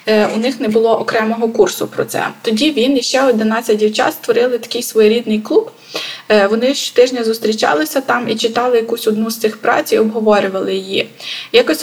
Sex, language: female, Ukrainian